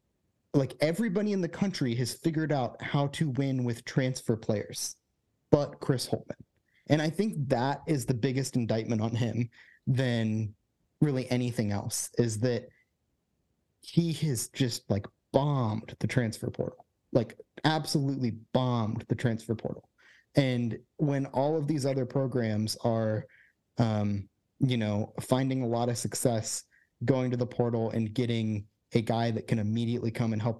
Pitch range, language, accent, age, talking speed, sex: 110-140 Hz, English, American, 30-49, 155 wpm, male